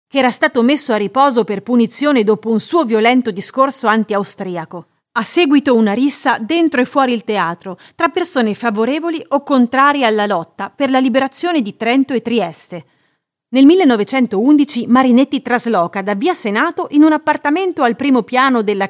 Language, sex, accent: Italian, female, native